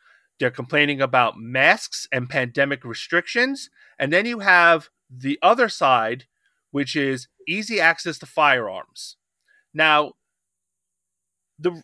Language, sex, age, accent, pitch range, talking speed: English, male, 30-49, American, 130-170 Hz, 110 wpm